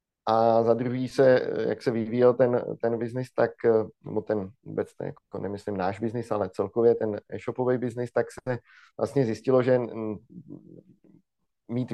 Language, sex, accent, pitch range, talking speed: Czech, male, native, 110-120 Hz, 150 wpm